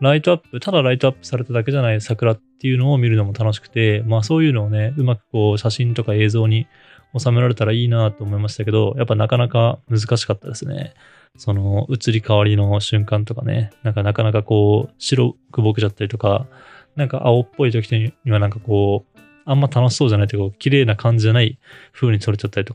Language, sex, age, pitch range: Japanese, male, 20-39, 105-125 Hz